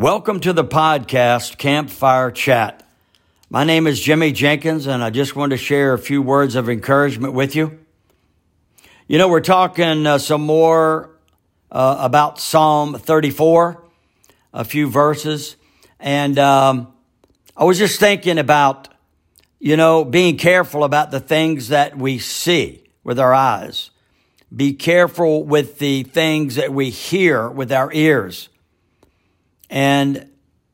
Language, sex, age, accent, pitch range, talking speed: English, male, 60-79, American, 130-160 Hz, 135 wpm